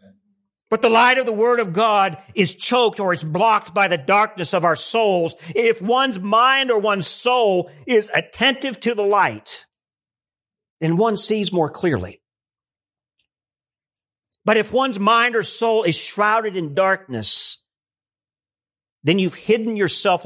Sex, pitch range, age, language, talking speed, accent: male, 165-220 Hz, 50-69, English, 145 wpm, American